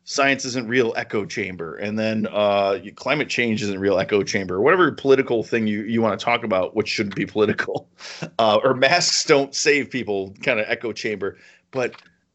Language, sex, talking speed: English, male, 180 wpm